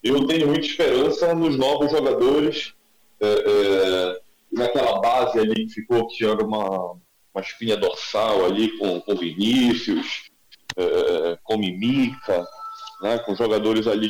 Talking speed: 130 wpm